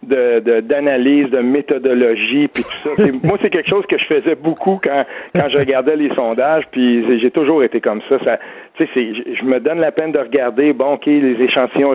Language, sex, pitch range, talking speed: French, male, 125-150 Hz, 215 wpm